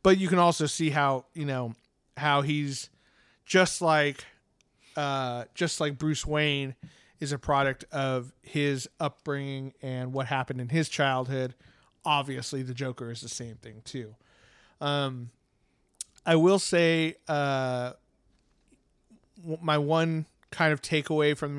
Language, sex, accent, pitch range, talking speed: English, male, American, 130-155 Hz, 140 wpm